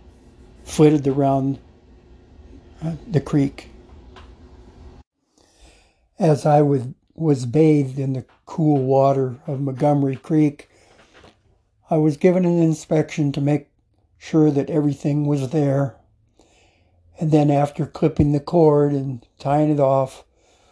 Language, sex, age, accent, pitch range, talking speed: English, male, 60-79, American, 110-150 Hz, 105 wpm